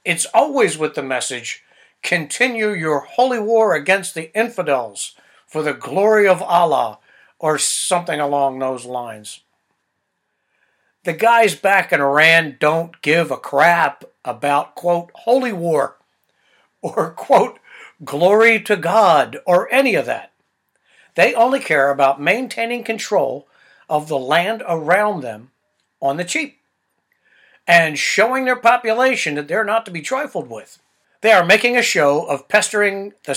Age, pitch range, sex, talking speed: 60-79, 150-220 Hz, male, 140 wpm